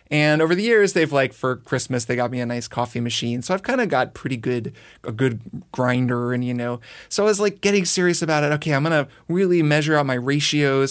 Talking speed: 250 wpm